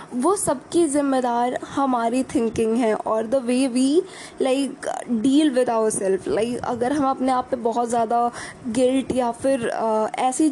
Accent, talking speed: native, 165 wpm